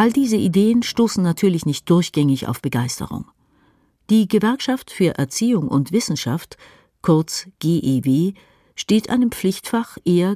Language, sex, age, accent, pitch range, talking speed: German, female, 50-69, German, 155-210 Hz, 120 wpm